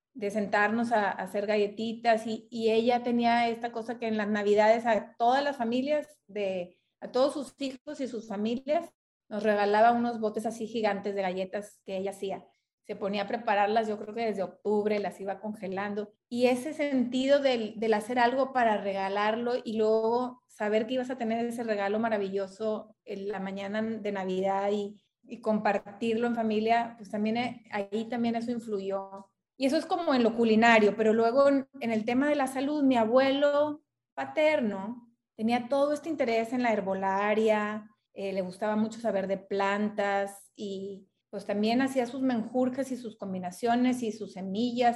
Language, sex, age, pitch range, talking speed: Spanish, female, 30-49, 210-250 Hz, 175 wpm